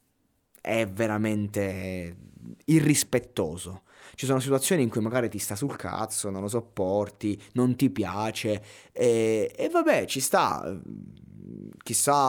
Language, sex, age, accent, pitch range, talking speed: Italian, male, 20-39, native, 100-125 Hz, 120 wpm